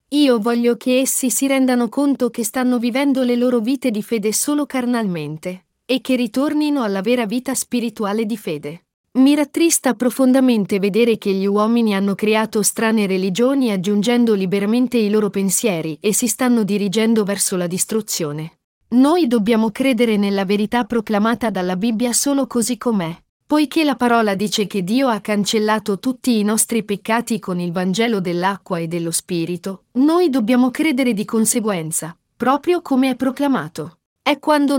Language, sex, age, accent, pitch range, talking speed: Italian, female, 40-59, native, 205-255 Hz, 155 wpm